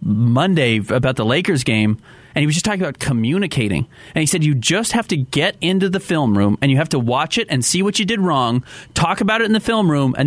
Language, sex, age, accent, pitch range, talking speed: English, male, 30-49, American, 130-195 Hz, 255 wpm